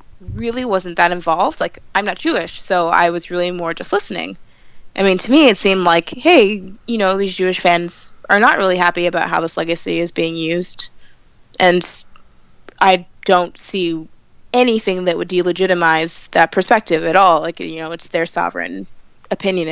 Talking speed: 175 wpm